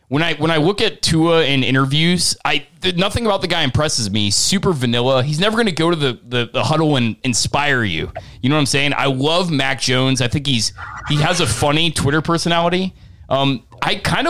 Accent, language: American, English